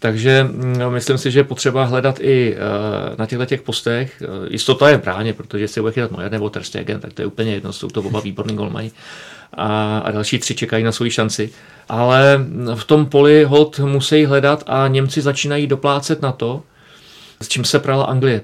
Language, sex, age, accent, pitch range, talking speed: Czech, male, 40-59, native, 115-140 Hz, 200 wpm